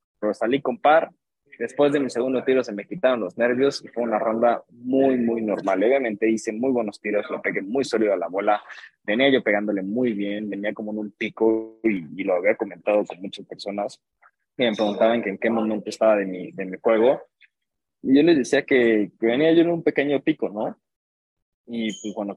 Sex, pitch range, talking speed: male, 105-130 Hz, 215 wpm